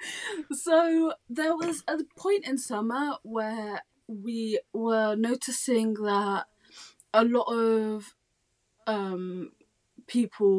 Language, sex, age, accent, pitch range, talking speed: English, female, 20-39, British, 180-225 Hz, 95 wpm